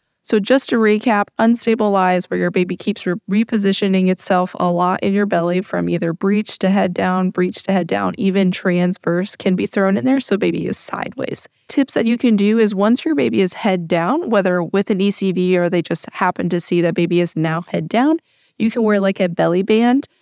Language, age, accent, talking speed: English, 20-39, American, 215 wpm